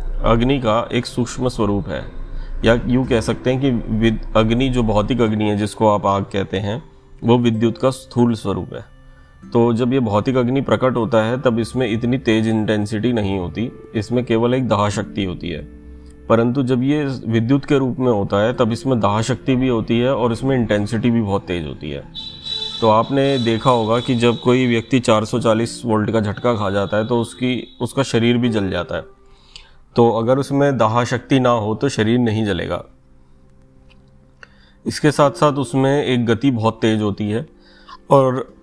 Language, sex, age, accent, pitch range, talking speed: Hindi, male, 30-49, native, 105-130 Hz, 185 wpm